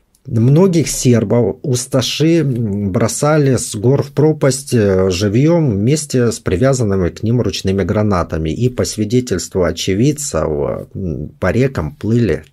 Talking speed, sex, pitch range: 110 wpm, male, 100-135 Hz